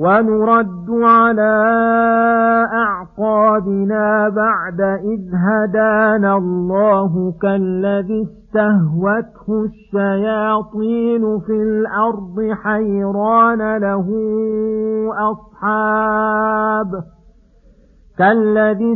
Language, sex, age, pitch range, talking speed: Arabic, male, 50-69, 200-220 Hz, 50 wpm